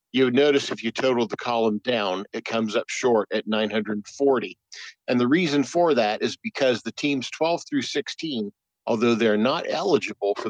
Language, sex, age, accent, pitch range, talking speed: English, male, 50-69, American, 110-135 Hz, 185 wpm